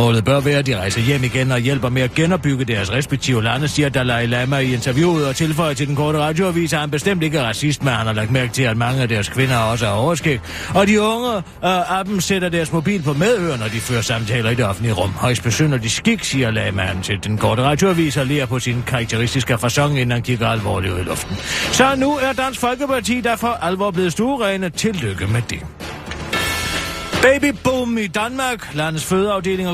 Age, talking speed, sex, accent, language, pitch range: 40-59, 215 wpm, male, German, Danish, 120-185 Hz